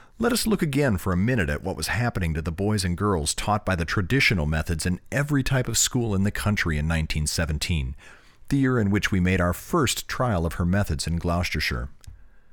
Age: 40-59